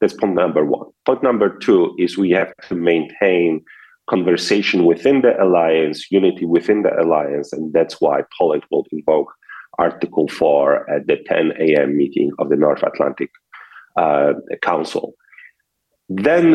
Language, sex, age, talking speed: English, male, 40-59, 145 wpm